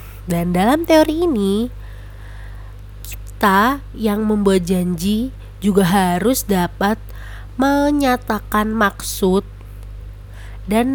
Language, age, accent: Indonesian, 30-49, native